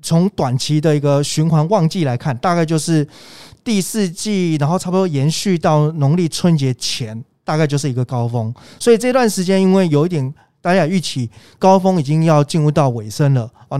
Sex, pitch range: male, 135-180 Hz